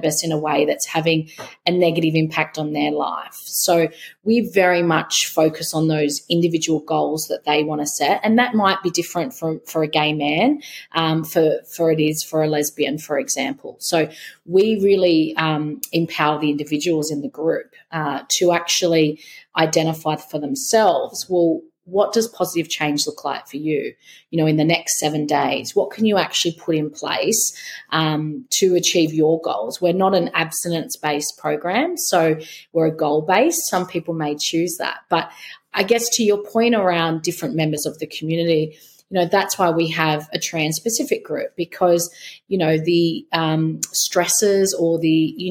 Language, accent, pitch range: English, Australian, 155-185 Hz